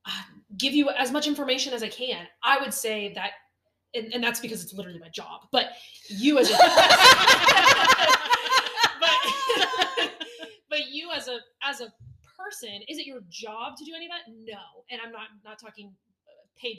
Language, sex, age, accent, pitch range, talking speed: English, female, 20-39, American, 205-260 Hz, 180 wpm